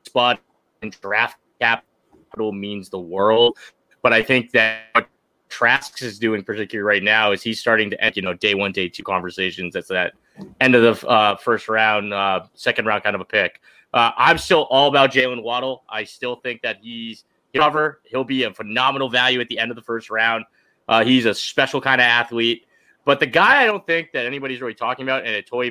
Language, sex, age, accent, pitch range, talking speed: English, male, 20-39, American, 115-140 Hz, 215 wpm